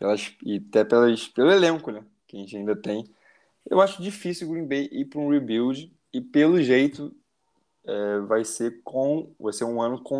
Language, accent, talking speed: Portuguese, Brazilian, 200 wpm